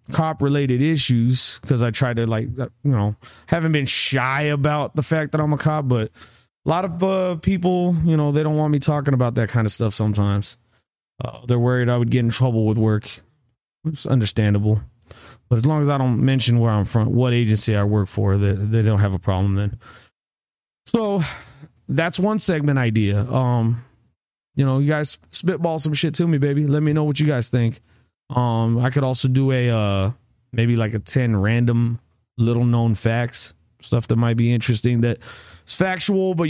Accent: American